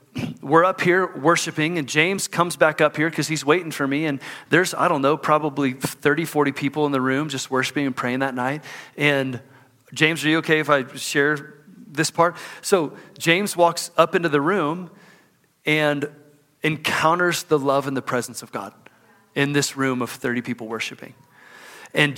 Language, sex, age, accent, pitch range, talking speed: English, male, 30-49, American, 135-170 Hz, 180 wpm